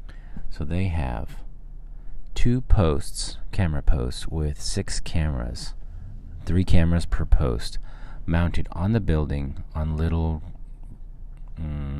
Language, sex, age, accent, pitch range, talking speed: English, male, 40-59, American, 75-95 Hz, 105 wpm